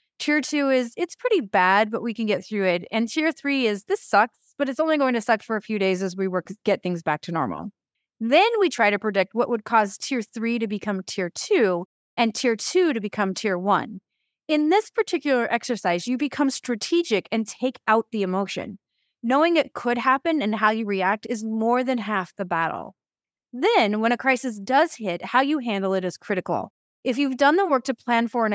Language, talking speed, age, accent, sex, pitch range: English, 220 wpm, 30-49, American, female, 195-260 Hz